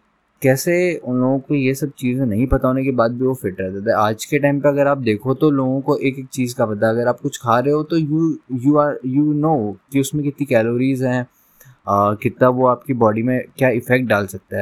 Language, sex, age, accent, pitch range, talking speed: Hindi, male, 20-39, native, 120-150 Hz, 240 wpm